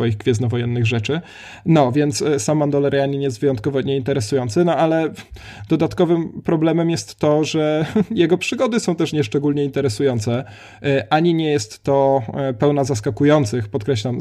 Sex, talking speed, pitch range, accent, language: male, 125 wpm, 125-150 Hz, native, Polish